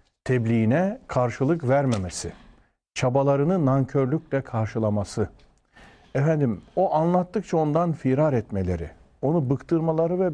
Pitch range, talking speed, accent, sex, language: 110-165 Hz, 85 wpm, native, male, Turkish